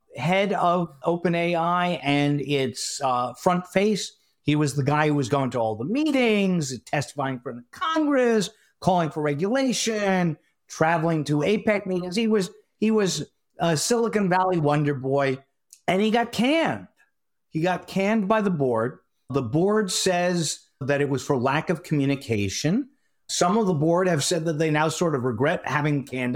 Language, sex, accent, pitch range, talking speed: English, male, American, 140-180 Hz, 165 wpm